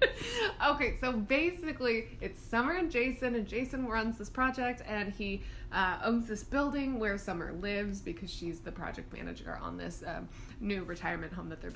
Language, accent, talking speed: English, American, 175 wpm